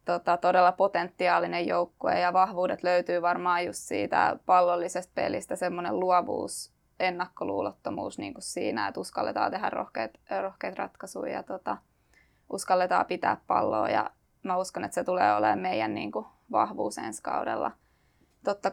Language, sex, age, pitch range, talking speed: Finnish, female, 20-39, 180-195 Hz, 135 wpm